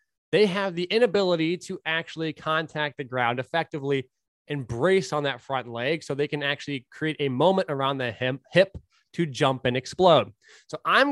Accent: American